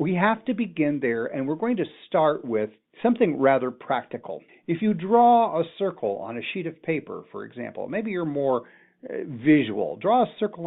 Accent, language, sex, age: American, English, male, 50-69